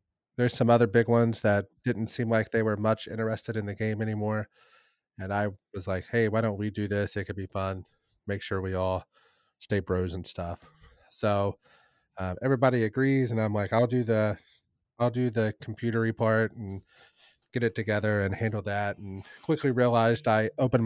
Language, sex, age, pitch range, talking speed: English, male, 30-49, 100-125 Hz, 190 wpm